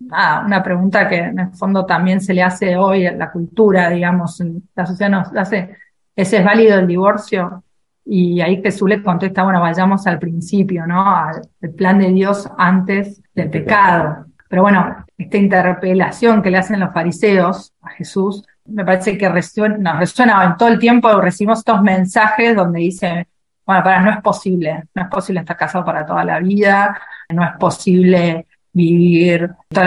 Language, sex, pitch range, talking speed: Spanish, female, 180-210 Hz, 175 wpm